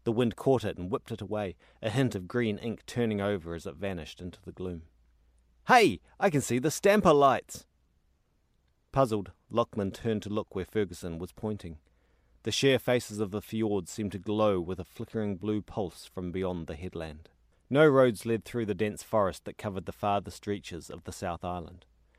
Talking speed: 190 wpm